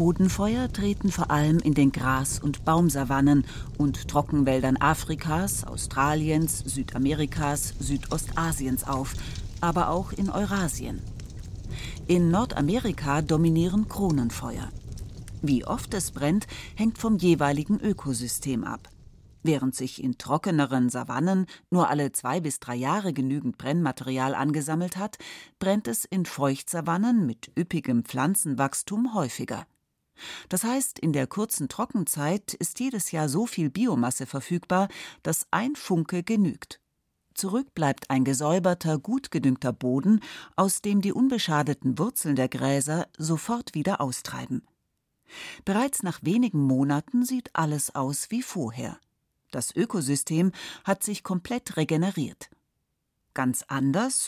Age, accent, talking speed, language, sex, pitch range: 40-59, German, 120 wpm, German, female, 135-190 Hz